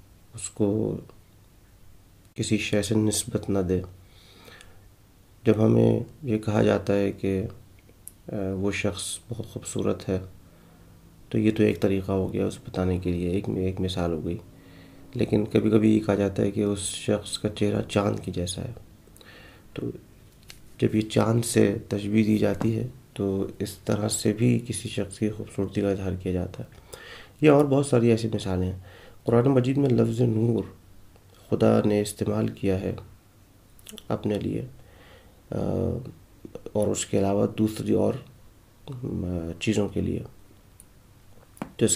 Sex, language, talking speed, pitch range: male, Urdu, 150 wpm, 95-110 Hz